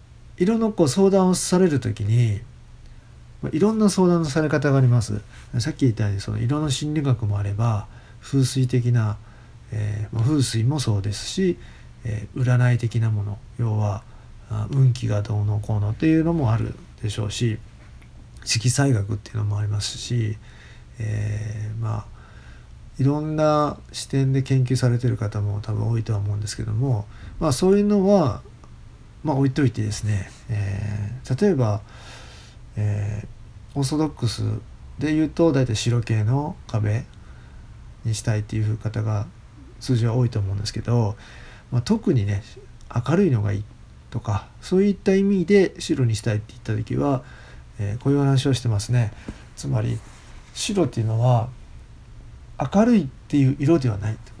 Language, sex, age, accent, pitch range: Japanese, male, 50-69, native, 105-135 Hz